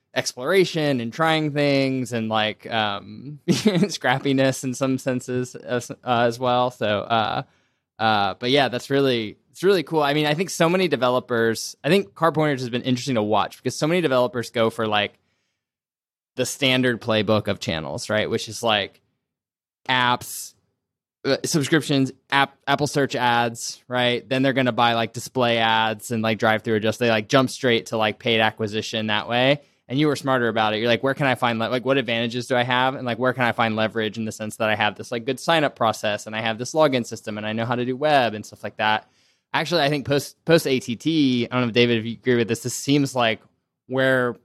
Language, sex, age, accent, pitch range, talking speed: English, male, 20-39, American, 110-135 Hz, 215 wpm